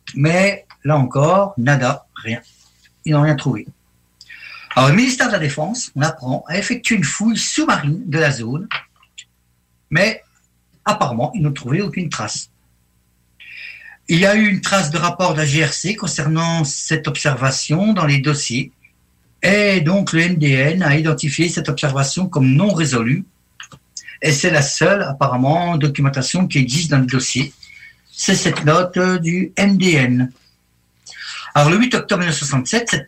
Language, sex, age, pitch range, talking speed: French, male, 60-79, 130-185 Hz, 150 wpm